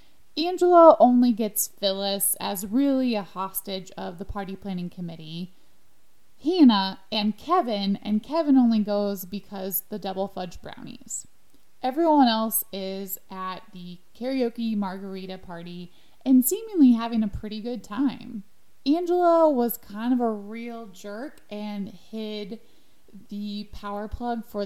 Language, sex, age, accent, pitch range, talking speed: English, female, 20-39, American, 195-245 Hz, 130 wpm